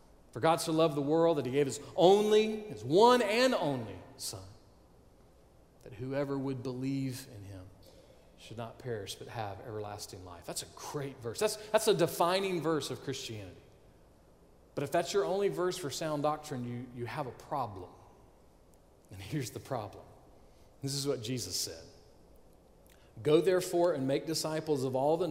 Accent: American